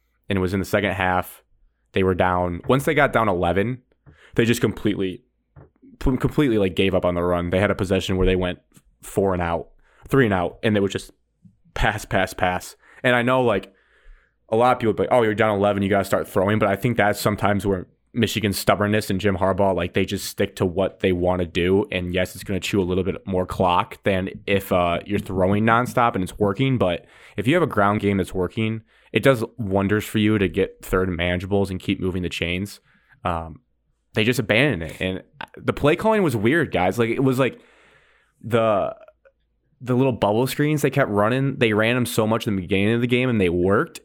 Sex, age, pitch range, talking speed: male, 20-39, 95-125 Hz, 225 wpm